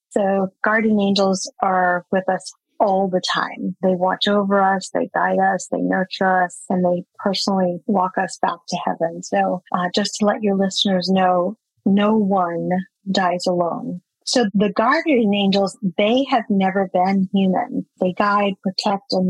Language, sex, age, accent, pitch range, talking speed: English, female, 40-59, American, 185-220 Hz, 160 wpm